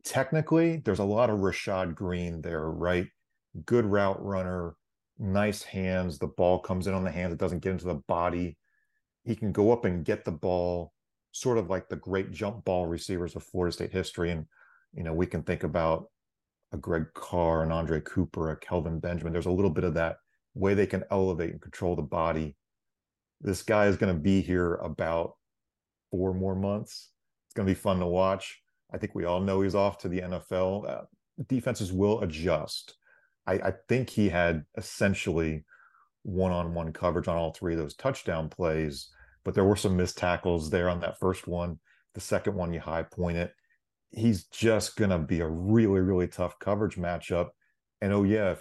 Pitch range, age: 85-100 Hz, 40-59